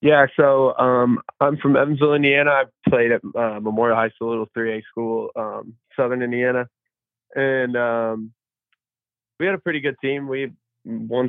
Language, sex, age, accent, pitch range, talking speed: English, male, 20-39, American, 115-125 Hz, 160 wpm